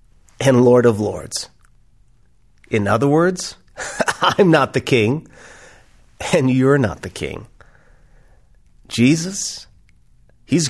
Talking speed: 100 wpm